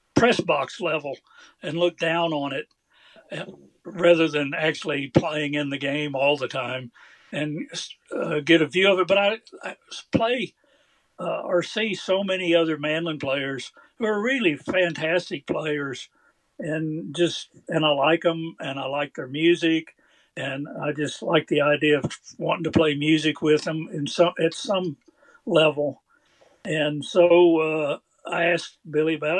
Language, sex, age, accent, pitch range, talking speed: English, male, 60-79, American, 150-180 Hz, 160 wpm